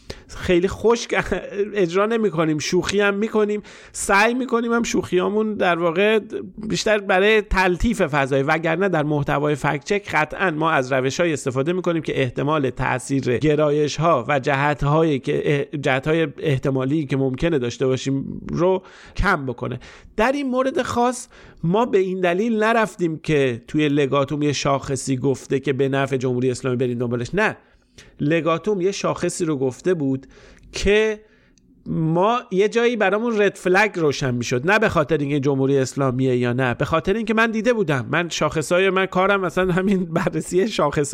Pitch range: 145-195 Hz